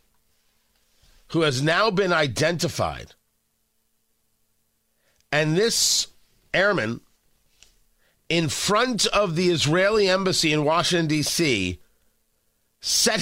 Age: 50-69